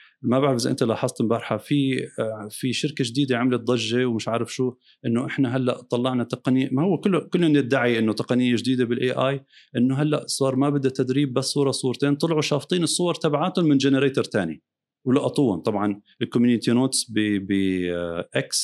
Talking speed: 165 wpm